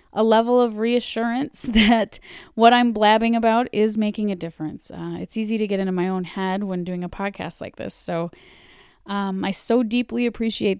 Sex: female